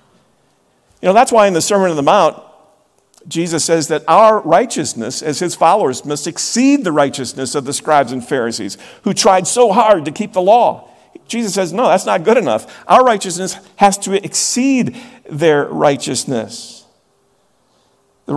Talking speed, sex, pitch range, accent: 165 wpm, male, 150-195 Hz, American